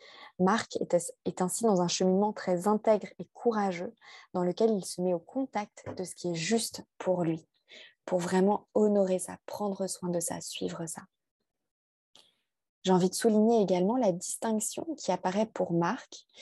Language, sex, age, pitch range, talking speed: French, female, 20-39, 180-220 Hz, 165 wpm